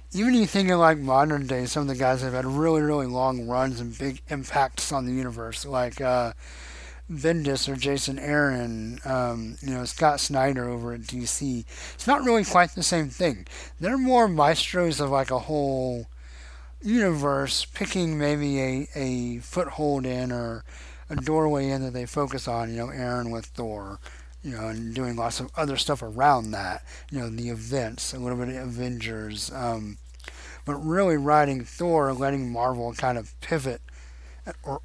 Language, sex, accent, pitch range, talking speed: English, male, American, 115-150 Hz, 175 wpm